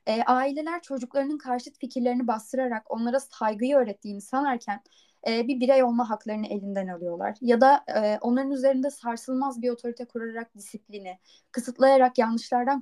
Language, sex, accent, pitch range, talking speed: Turkish, female, native, 220-270 Hz, 120 wpm